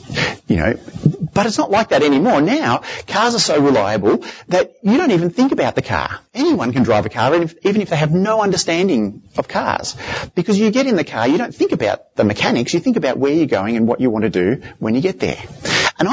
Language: English